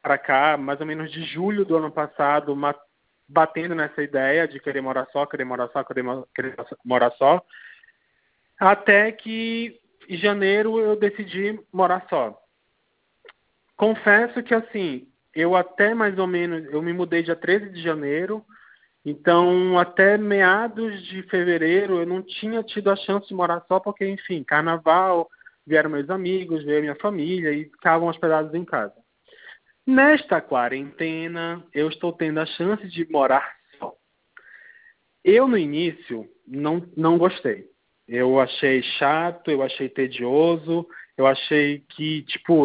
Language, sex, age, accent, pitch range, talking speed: Portuguese, male, 20-39, Brazilian, 145-195 Hz, 140 wpm